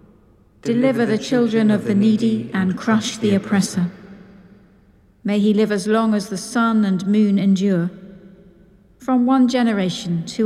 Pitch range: 190-225 Hz